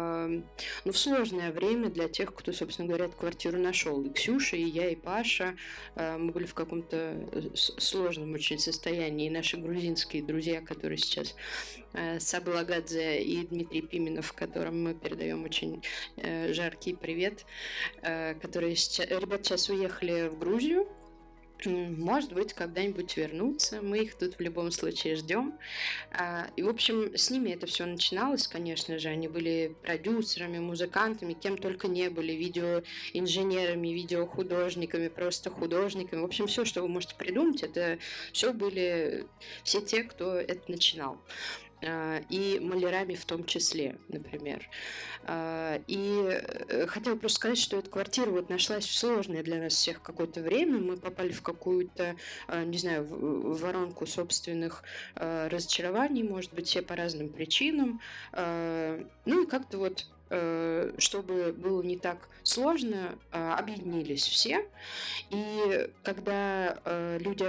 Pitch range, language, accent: 165-195 Hz, Russian, native